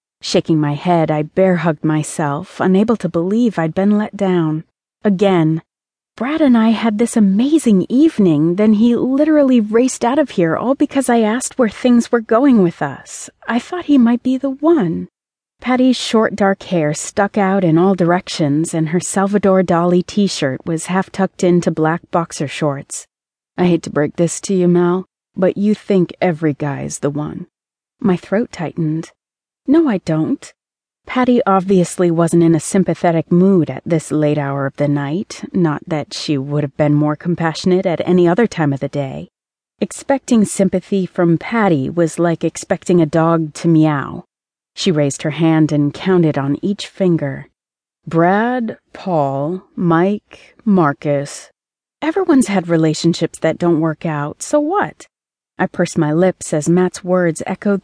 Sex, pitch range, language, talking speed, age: female, 160-210 Hz, English, 160 wpm, 30-49